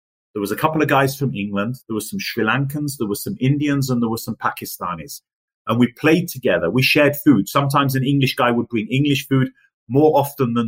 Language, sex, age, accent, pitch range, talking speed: English, male, 30-49, British, 120-145 Hz, 225 wpm